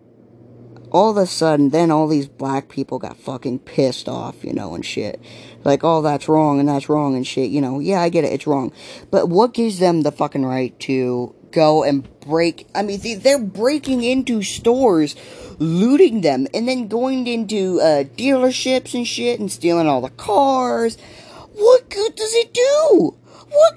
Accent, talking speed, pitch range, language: American, 185 wpm, 170-265 Hz, English